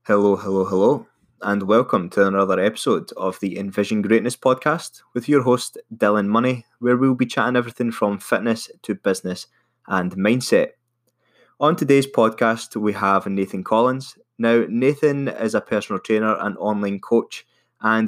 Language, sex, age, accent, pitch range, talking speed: English, male, 20-39, British, 100-120 Hz, 155 wpm